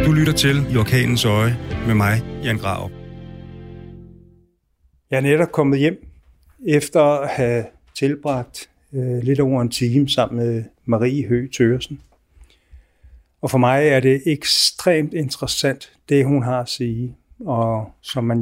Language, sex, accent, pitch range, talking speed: Danish, male, native, 115-140 Hz, 140 wpm